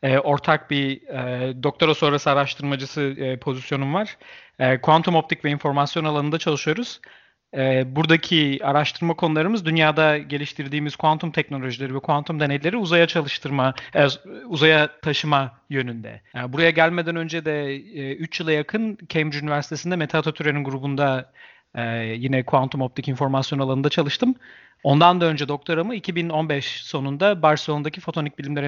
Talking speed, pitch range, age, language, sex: 130 wpm, 135-160 Hz, 40-59, English, male